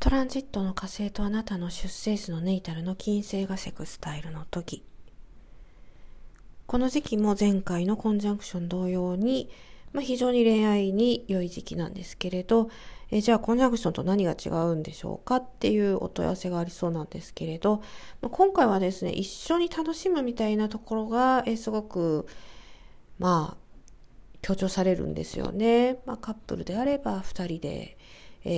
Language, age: Japanese, 40-59